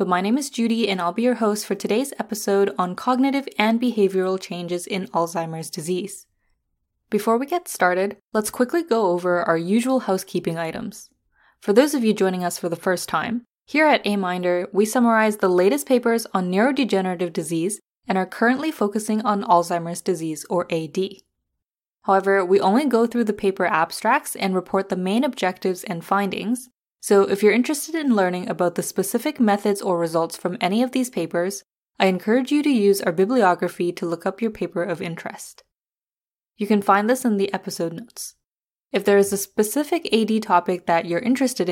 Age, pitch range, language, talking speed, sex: 10-29, 180-230 Hz, English, 185 wpm, female